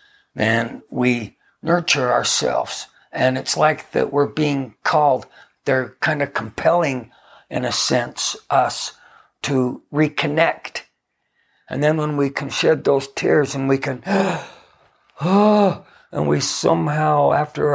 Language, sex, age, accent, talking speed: English, male, 60-79, American, 120 wpm